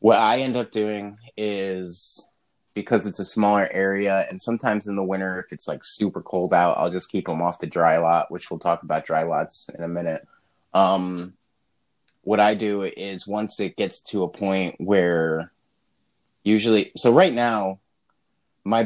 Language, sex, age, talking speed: English, male, 20-39, 180 wpm